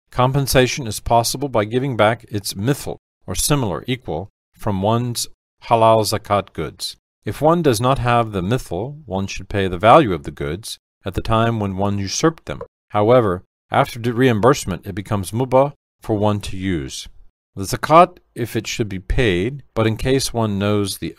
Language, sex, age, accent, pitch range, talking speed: English, male, 40-59, American, 95-120 Hz, 175 wpm